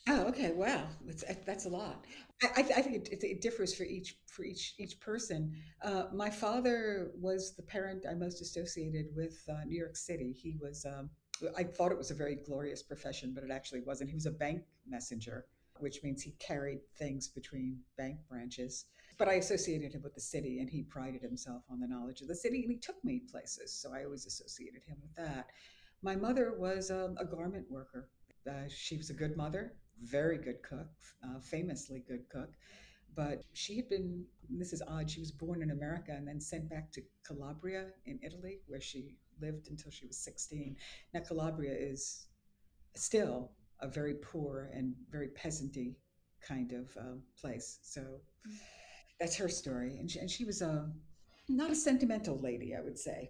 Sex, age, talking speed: female, 60-79, 190 wpm